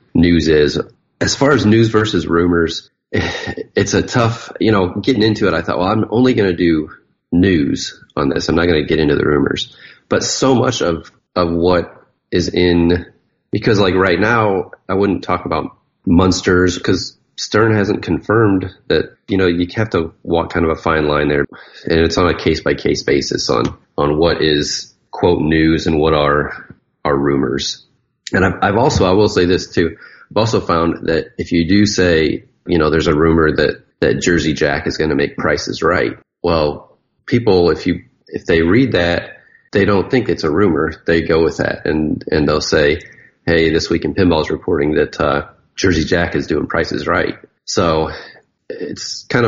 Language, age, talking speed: English, 30-49, 195 wpm